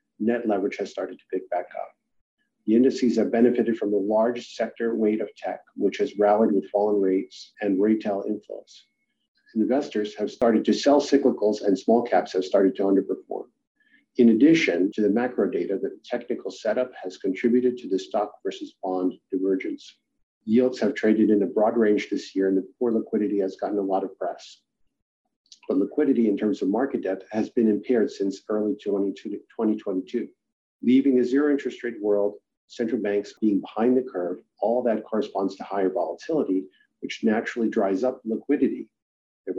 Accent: American